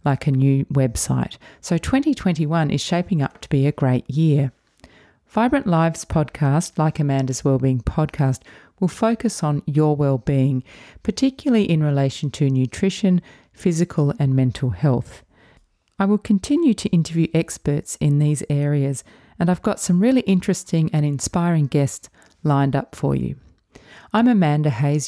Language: English